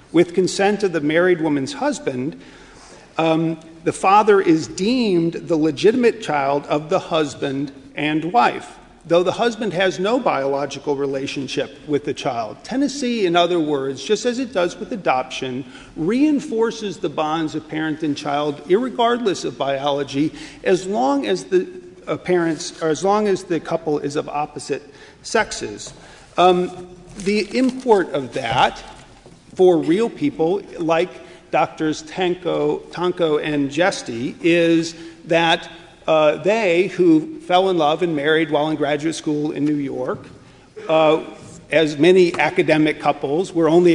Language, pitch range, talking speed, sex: English, 150-185 Hz, 140 wpm, male